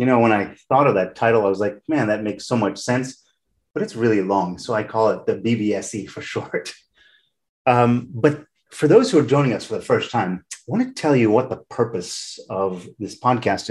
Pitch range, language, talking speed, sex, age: 100-130 Hz, English, 230 wpm, male, 30-49